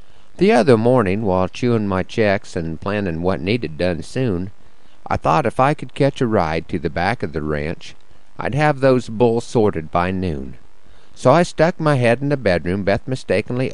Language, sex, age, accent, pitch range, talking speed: English, male, 50-69, American, 95-135 Hz, 190 wpm